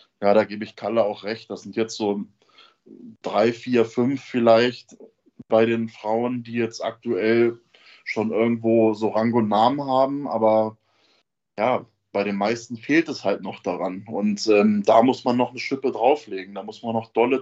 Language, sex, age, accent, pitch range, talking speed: German, male, 20-39, German, 110-130 Hz, 180 wpm